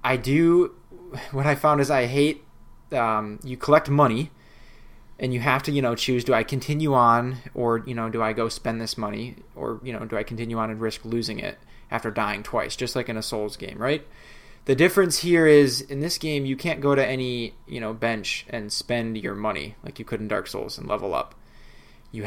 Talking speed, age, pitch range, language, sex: 220 wpm, 20-39, 115-150 Hz, English, male